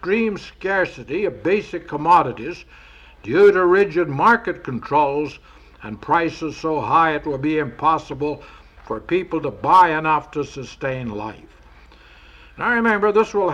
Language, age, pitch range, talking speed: English, 60-79, 130-180 Hz, 130 wpm